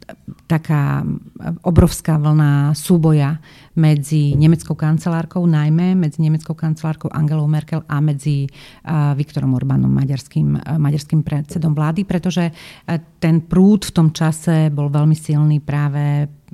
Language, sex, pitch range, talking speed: Slovak, female, 150-175 Hz, 110 wpm